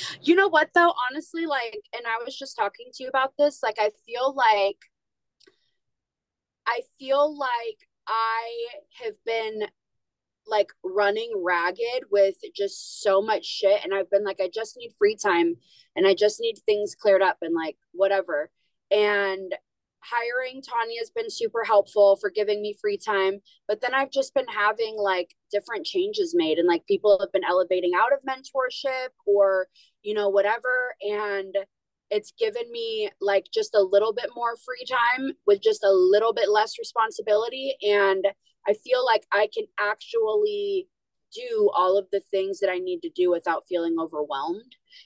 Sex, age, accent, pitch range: female, 20-39, American, 195-290 Hz